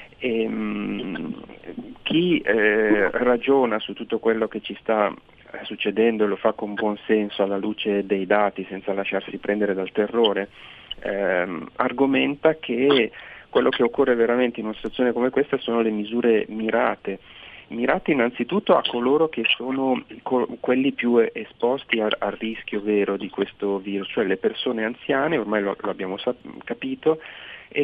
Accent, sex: native, male